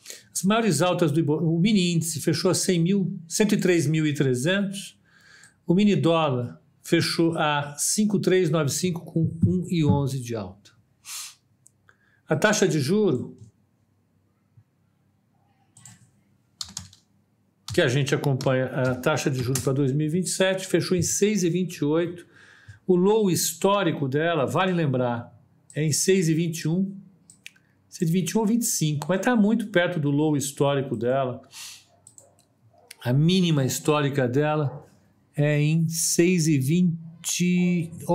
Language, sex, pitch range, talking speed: Portuguese, male, 140-185 Hz, 105 wpm